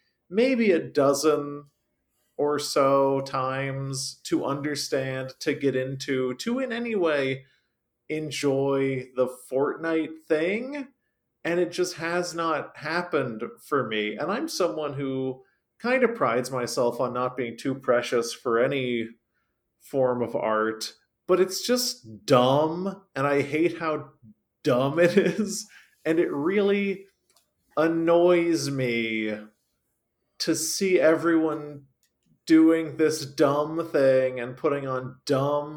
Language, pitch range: English, 125-160 Hz